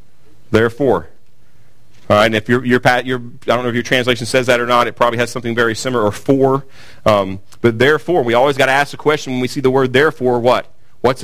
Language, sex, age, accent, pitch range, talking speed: English, male, 40-59, American, 120-155 Hz, 235 wpm